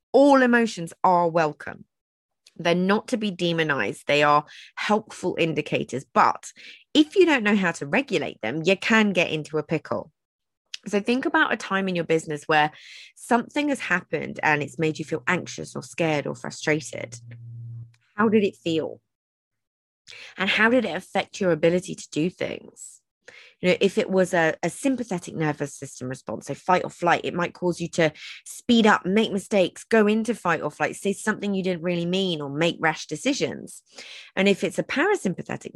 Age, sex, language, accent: 20-39, female, English, British